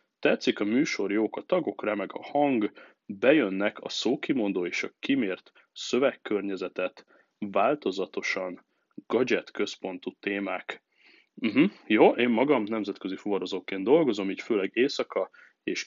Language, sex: Hungarian, male